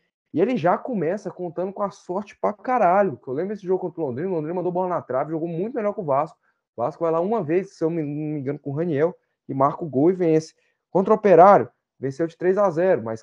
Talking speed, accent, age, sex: 265 wpm, Brazilian, 20-39, male